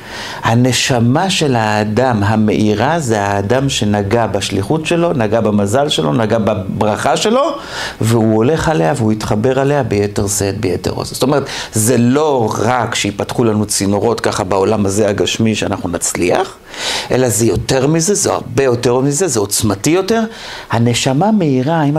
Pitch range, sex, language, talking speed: 110-175 Hz, male, Hebrew, 145 wpm